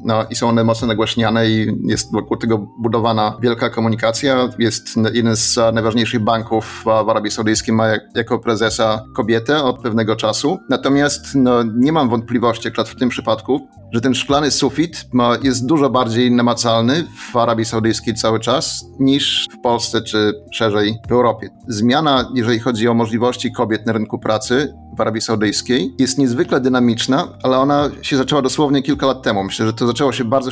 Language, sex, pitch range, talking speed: Polish, male, 110-125 Hz, 175 wpm